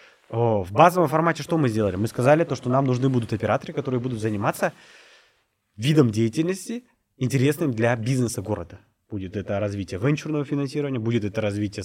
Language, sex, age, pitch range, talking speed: Russian, male, 20-39, 110-145 Hz, 160 wpm